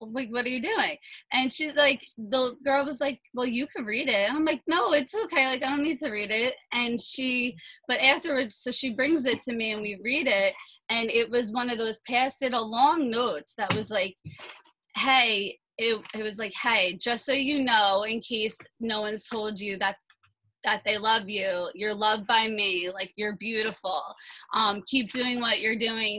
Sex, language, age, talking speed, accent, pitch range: female, English, 20-39, 205 wpm, American, 200-245 Hz